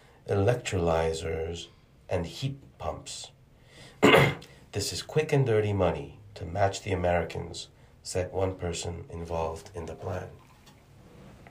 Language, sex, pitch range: Korean, male, 90-110 Hz